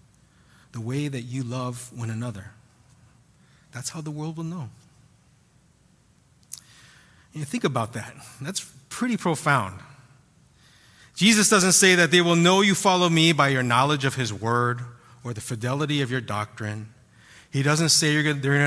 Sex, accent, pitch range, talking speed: male, American, 120-160 Hz, 155 wpm